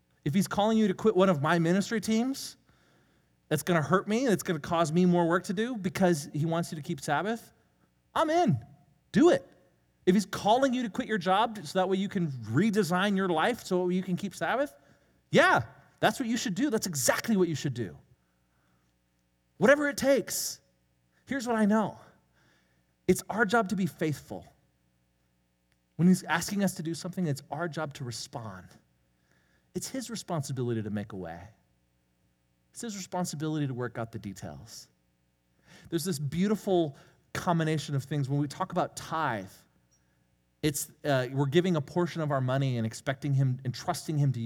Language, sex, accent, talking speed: English, male, American, 185 wpm